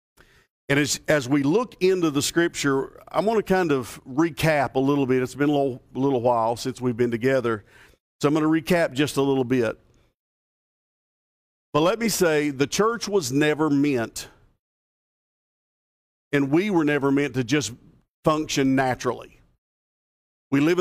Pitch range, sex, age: 130-155 Hz, male, 50-69